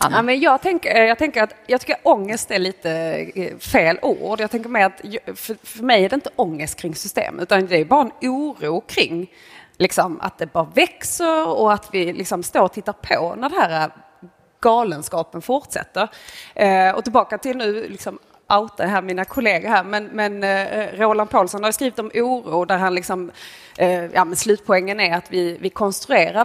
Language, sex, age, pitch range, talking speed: Swedish, female, 30-49, 185-230 Hz, 180 wpm